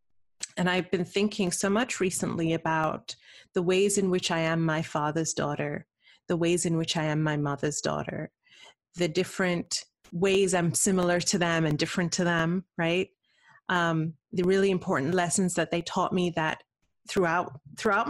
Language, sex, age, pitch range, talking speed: English, female, 30-49, 165-190 Hz, 165 wpm